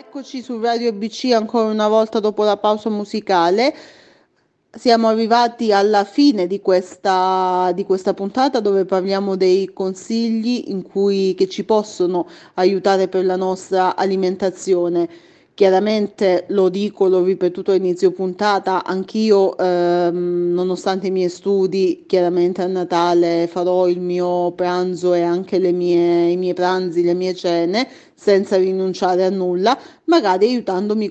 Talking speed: 135 wpm